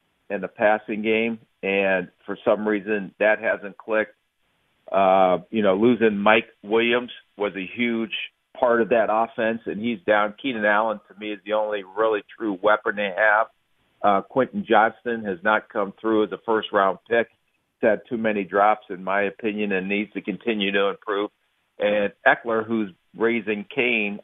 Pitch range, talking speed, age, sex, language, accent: 100-115 Hz, 170 wpm, 50-69, male, English, American